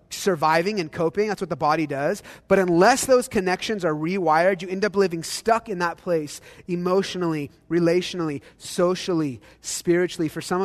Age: 30-49